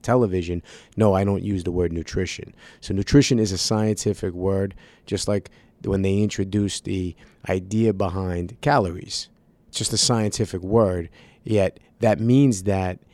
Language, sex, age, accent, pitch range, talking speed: English, male, 30-49, American, 95-115 Hz, 145 wpm